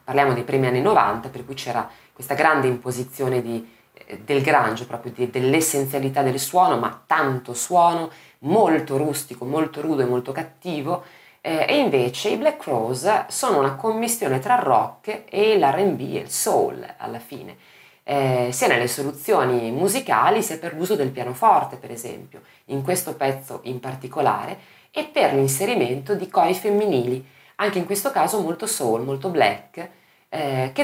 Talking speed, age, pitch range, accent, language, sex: 160 wpm, 30-49, 125-180 Hz, native, Italian, female